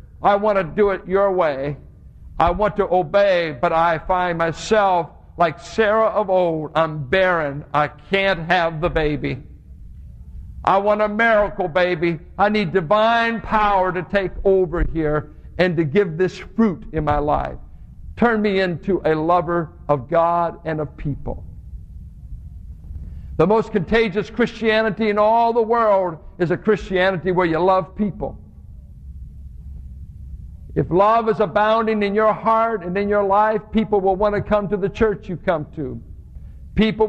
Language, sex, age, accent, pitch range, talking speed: English, male, 60-79, American, 150-210 Hz, 155 wpm